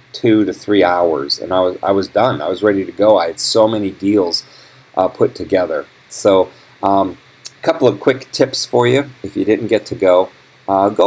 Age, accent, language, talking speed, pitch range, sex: 40-59, American, English, 215 wpm, 90-115 Hz, male